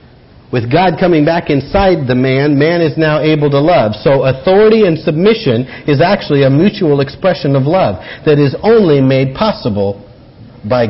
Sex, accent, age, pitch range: male, American, 50-69, 125-180 Hz